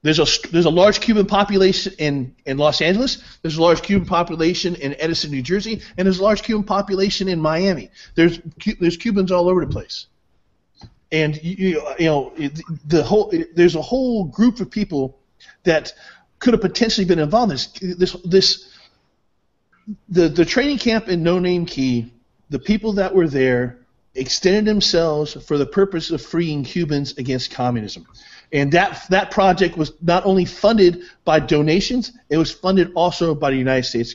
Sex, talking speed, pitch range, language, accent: male, 170 wpm, 155-195 Hz, English, American